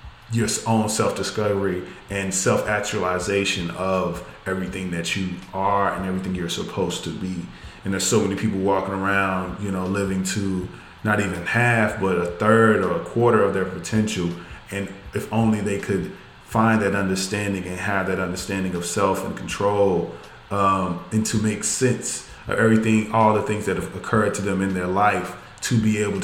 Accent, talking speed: American, 175 wpm